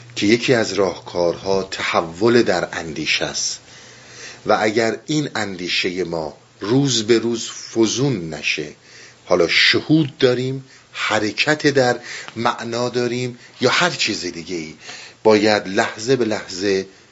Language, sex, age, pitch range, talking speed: Persian, male, 50-69, 105-130 Hz, 120 wpm